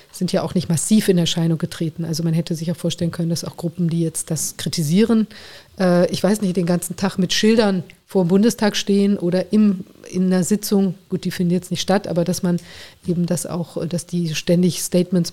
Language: German